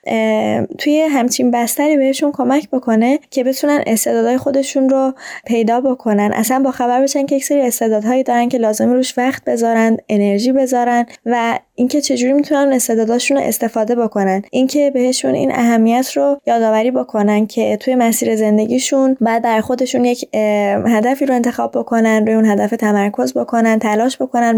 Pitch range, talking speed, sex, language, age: 220-265 Hz, 155 wpm, female, Persian, 20-39